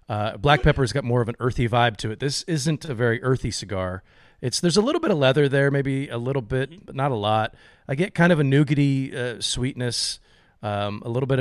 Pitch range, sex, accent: 115-145 Hz, male, American